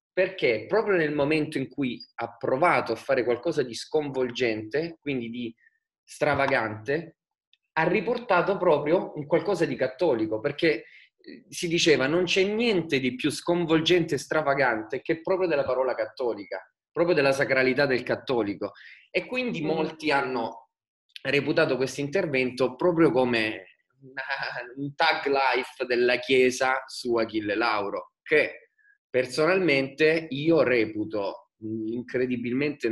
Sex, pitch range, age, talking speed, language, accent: male, 120-170 Hz, 20-39, 120 wpm, Italian, native